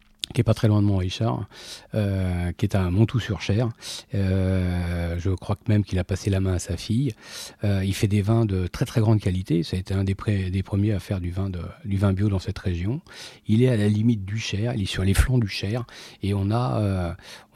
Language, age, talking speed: French, 40-59, 255 wpm